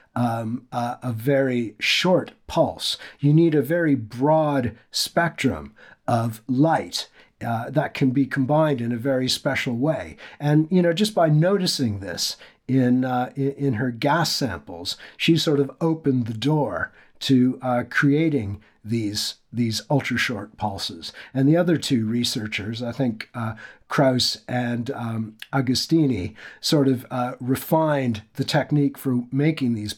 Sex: male